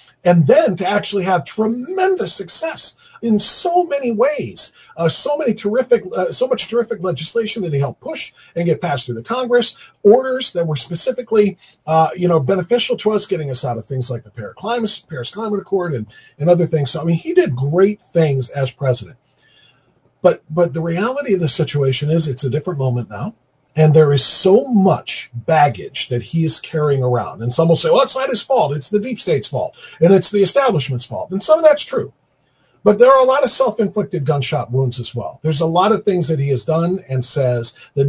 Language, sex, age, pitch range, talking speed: English, male, 40-59, 135-195 Hz, 215 wpm